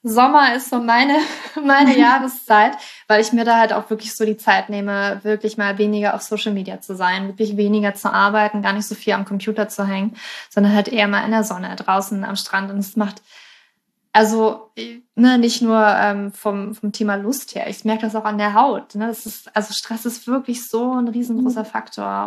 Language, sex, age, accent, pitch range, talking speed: German, female, 20-39, German, 210-230 Hz, 210 wpm